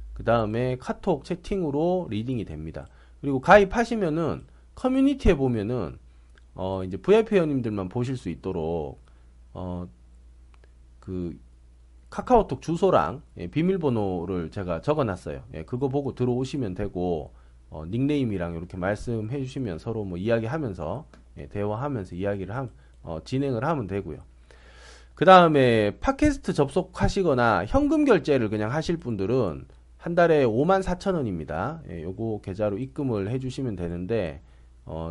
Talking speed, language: 115 wpm, English